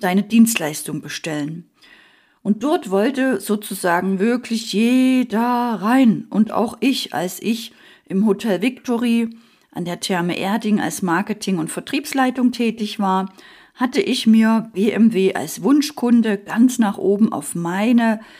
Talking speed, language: 125 wpm, German